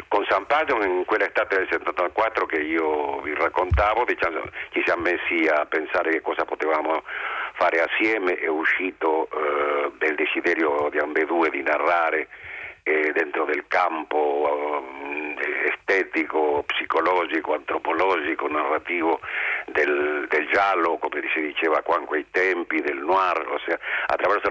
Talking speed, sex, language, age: 135 wpm, male, Italian, 50-69